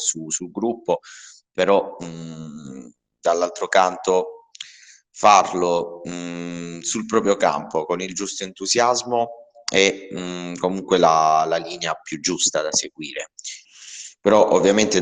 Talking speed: 95 wpm